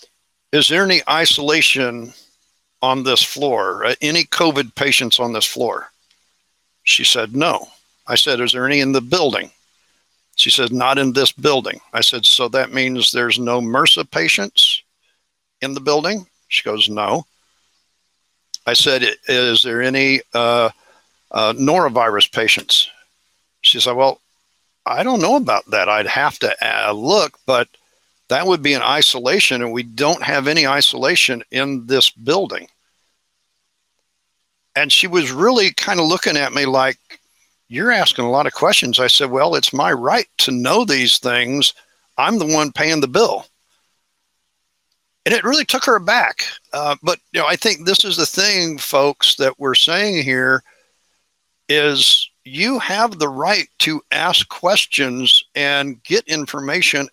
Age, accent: 60-79, American